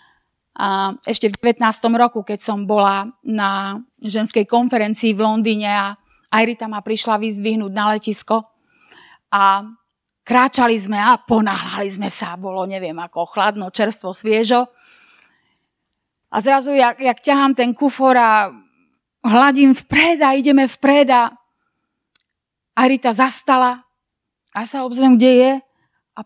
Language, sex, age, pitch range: Slovak, female, 30-49, 215-250 Hz